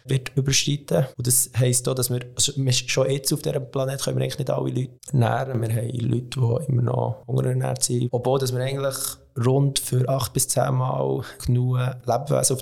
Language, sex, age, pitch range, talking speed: English, male, 20-39, 115-130 Hz, 170 wpm